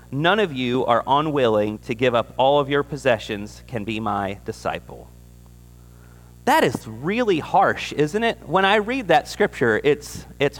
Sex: male